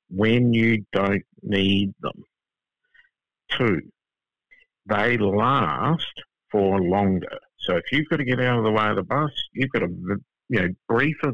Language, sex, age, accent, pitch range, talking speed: English, male, 60-79, Australian, 95-125 Hz, 155 wpm